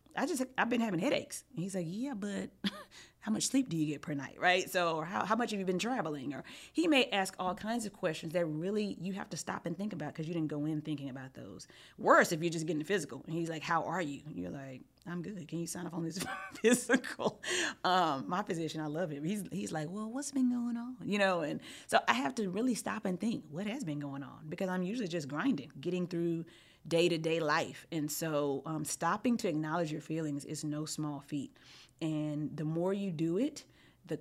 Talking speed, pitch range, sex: 240 wpm, 155-200 Hz, female